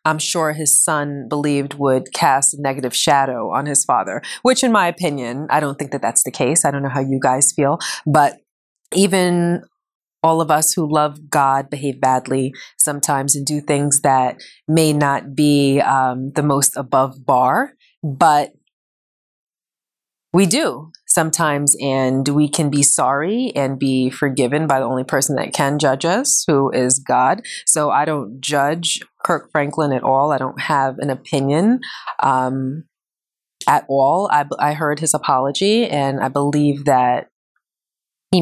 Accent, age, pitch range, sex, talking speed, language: American, 30-49, 135-165 Hz, female, 160 wpm, English